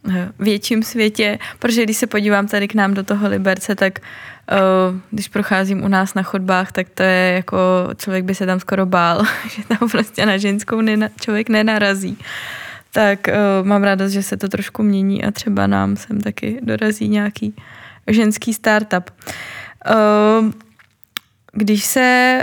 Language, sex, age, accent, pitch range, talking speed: Czech, female, 20-39, native, 190-215 Hz, 145 wpm